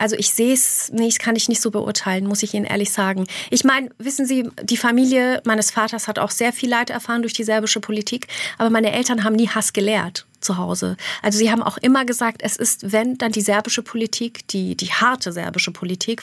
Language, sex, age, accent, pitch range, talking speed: German, female, 30-49, German, 200-245 Hz, 225 wpm